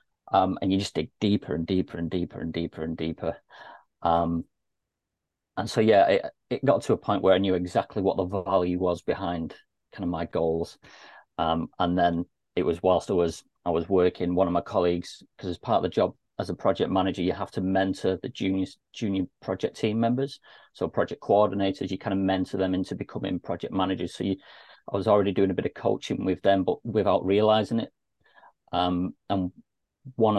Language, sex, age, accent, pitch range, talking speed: English, male, 40-59, British, 90-110 Hz, 205 wpm